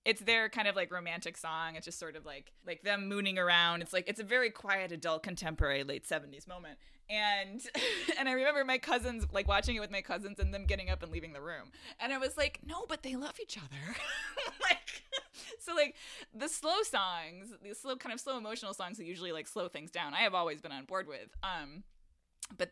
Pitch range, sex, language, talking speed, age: 175-265 Hz, female, English, 225 wpm, 20-39